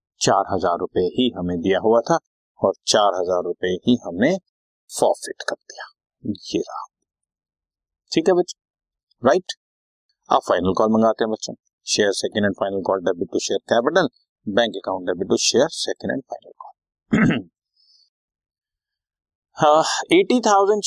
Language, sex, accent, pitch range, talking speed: Hindi, male, native, 95-160 Hz, 140 wpm